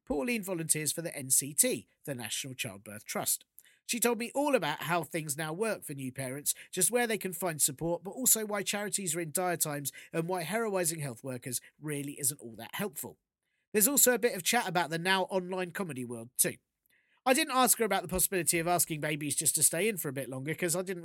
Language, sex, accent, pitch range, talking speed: English, male, British, 135-185 Hz, 225 wpm